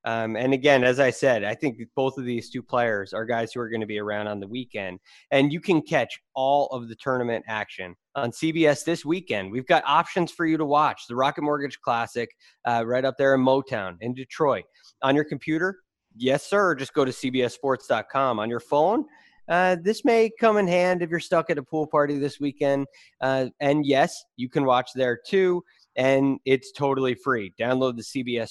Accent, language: American, English